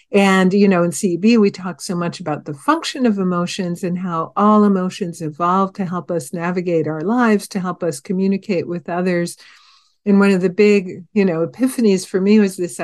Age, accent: 50-69, American